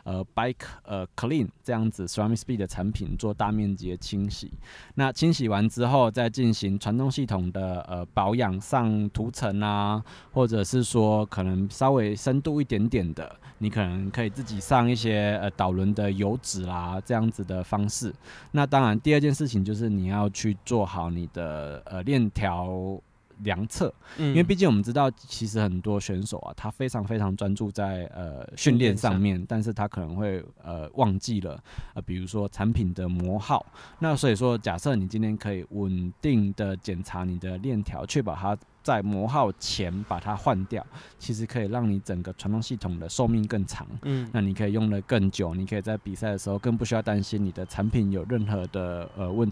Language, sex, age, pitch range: Chinese, male, 20-39, 95-115 Hz